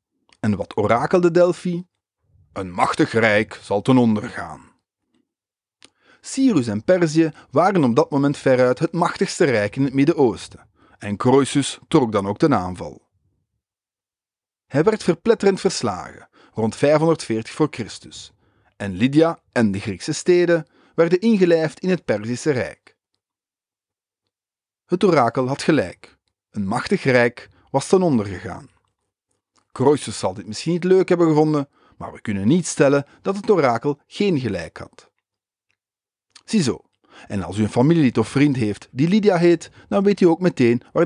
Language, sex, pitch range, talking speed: English, male, 105-170 Hz, 145 wpm